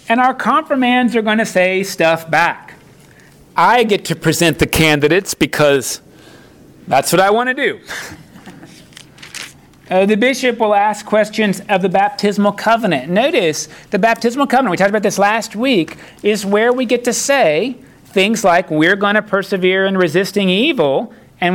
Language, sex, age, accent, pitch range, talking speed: English, male, 40-59, American, 160-215 Hz, 160 wpm